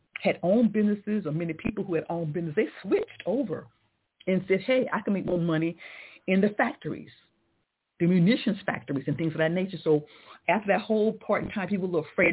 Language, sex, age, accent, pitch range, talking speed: English, female, 50-69, American, 150-185 Hz, 200 wpm